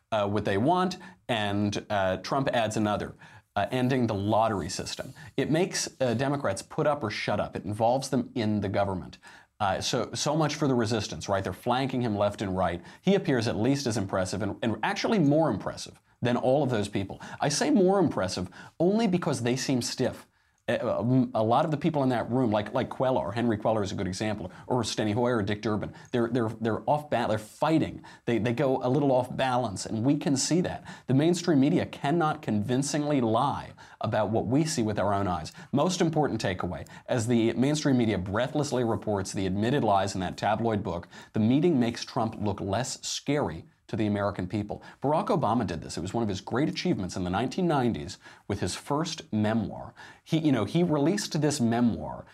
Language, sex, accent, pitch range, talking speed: English, male, American, 105-140 Hz, 200 wpm